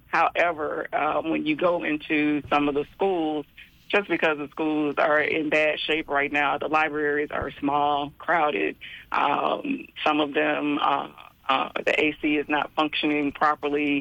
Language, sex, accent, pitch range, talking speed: English, female, American, 145-155 Hz, 160 wpm